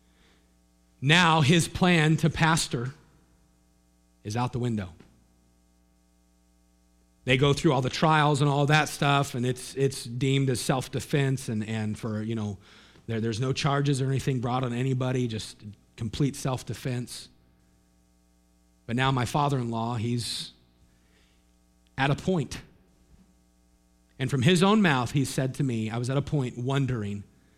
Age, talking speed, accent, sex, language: 40-59, 140 wpm, American, male, English